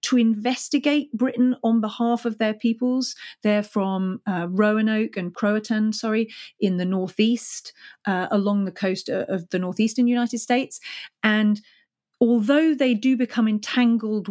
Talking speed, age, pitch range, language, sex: 140 wpm, 40-59, 185-230 Hz, English, female